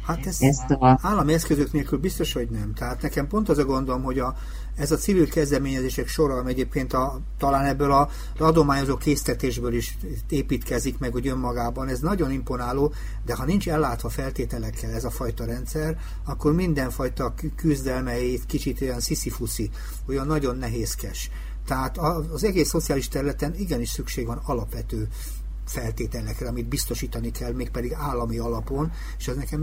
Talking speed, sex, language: 150 wpm, male, Hungarian